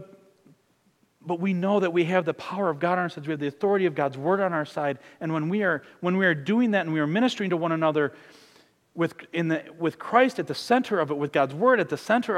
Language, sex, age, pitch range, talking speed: English, male, 40-59, 135-185 Hz, 265 wpm